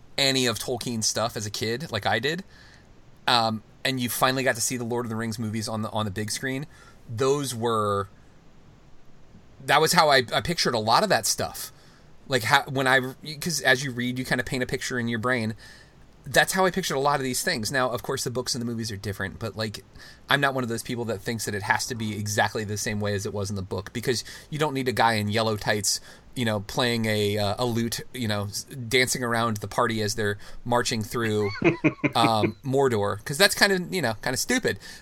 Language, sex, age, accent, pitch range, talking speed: English, male, 30-49, American, 110-135 Hz, 240 wpm